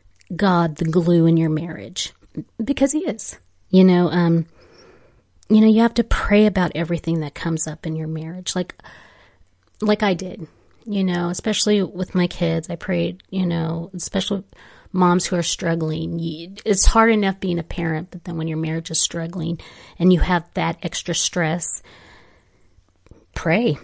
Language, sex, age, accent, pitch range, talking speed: English, female, 30-49, American, 165-205 Hz, 165 wpm